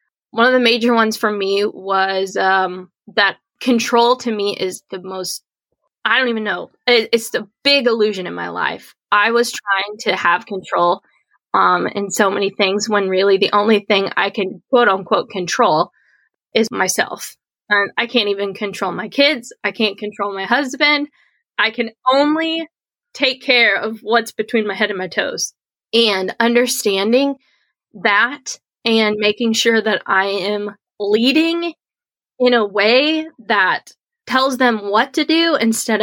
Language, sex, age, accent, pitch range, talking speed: English, female, 20-39, American, 200-255 Hz, 155 wpm